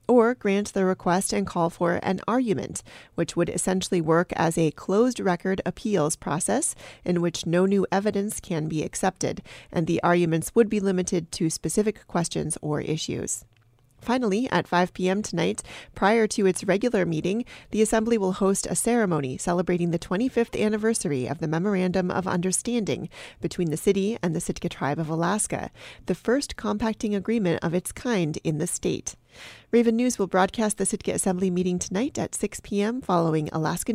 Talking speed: 170 wpm